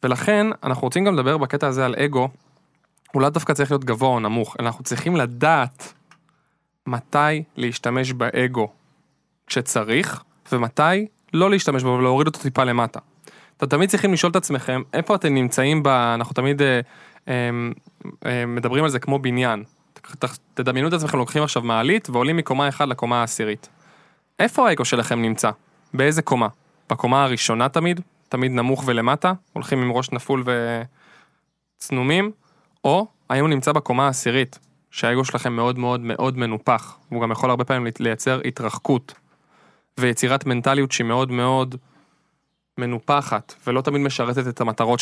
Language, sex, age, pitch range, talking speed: Hebrew, male, 20-39, 120-155 Hz, 145 wpm